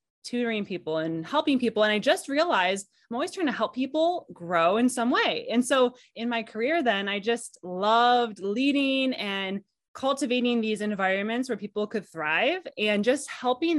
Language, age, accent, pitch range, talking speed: English, 20-39, American, 180-245 Hz, 175 wpm